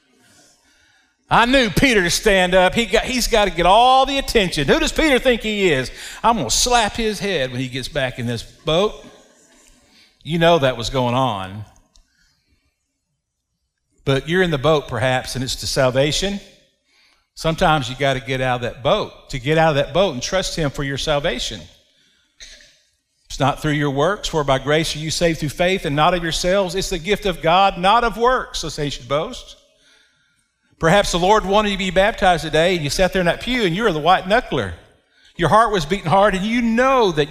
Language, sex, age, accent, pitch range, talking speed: English, male, 50-69, American, 155-220 Hz, 210 wpm